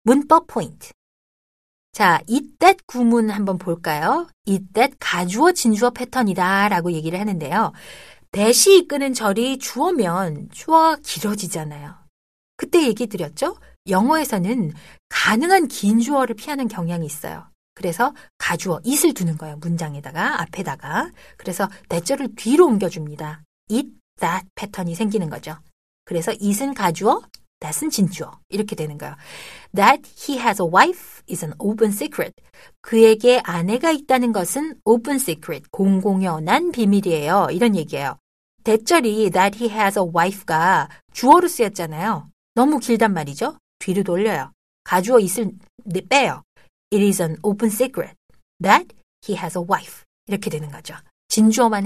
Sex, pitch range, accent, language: female, 180-250 Hz, native, Korean